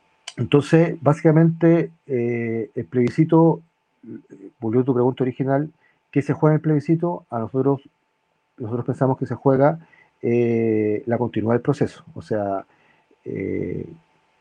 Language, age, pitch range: Spanish, 40-59, 115-145 Hz